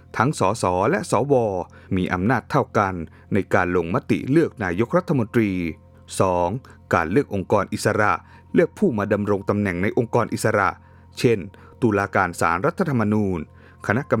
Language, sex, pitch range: Thai, male, 90-115 Hz